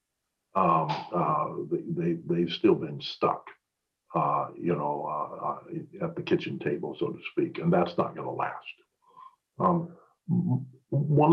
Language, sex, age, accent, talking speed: English, male, 60-79, American, 125 wpm